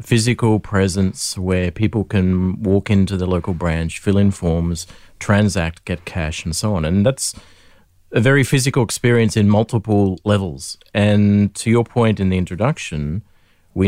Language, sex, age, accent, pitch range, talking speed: English, male, 40-59, Australian, 90-105 Hz, 155 wpm